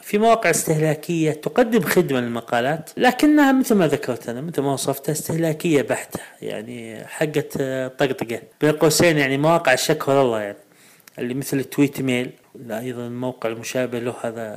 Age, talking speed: 30-49, 145 wpm